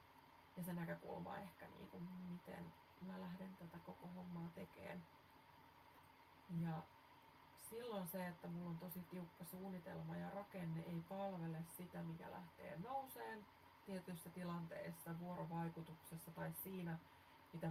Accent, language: native, Finnish